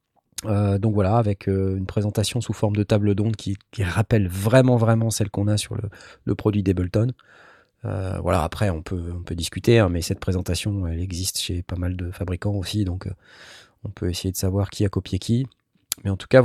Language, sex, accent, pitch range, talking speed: French, male, French, 100-130 Hz, 220 wpm